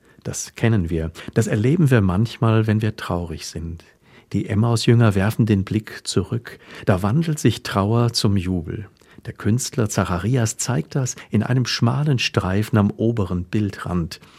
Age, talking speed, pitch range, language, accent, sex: 50-69, 145 wpm, 95-115 Hz, German, German, male